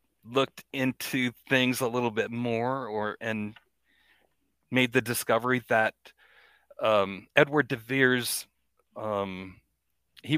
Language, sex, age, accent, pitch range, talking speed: English, male, 40-59, American, 115-140 Hz, 110 wpm